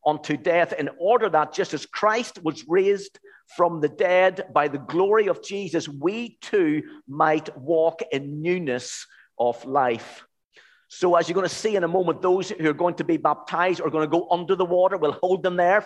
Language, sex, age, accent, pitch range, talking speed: English, male, 50-69, British, 145-185 Hz, 205 wpm